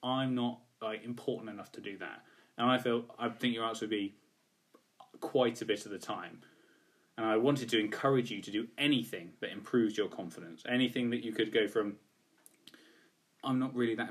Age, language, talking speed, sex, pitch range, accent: 10-29, English, 195 wpm, male, 110-130 Hz, British